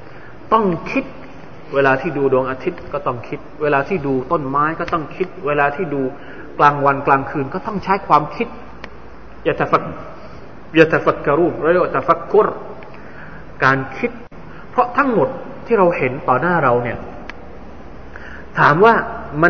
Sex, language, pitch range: male, Thai, 145-220 Hz